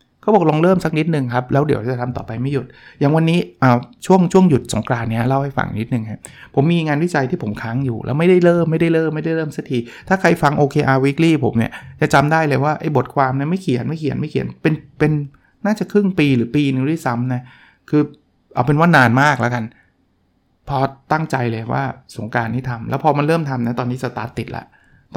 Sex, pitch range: male, 120-155 Hz